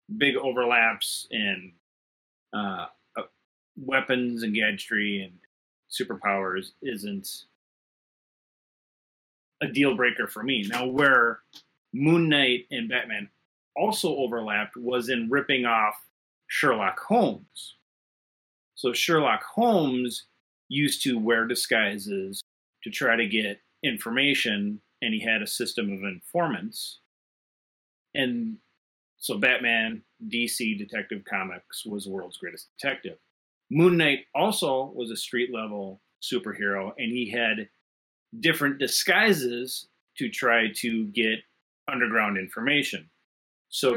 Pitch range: 105-140 Hz